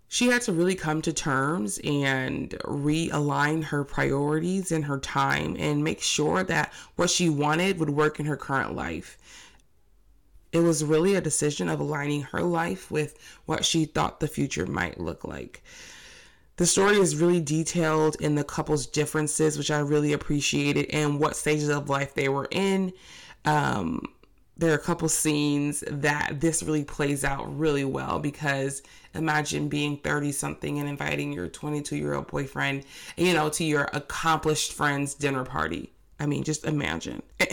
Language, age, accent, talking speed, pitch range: English, 20-39, American, 165 wpm, 140-155 Hz